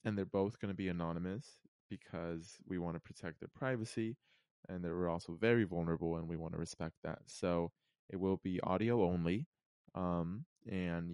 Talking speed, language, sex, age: 180 wpm, English, male, 20-39